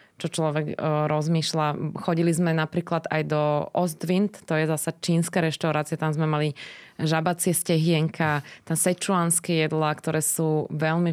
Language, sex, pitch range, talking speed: Slovak, female, 155-170 Hz, 140 wpm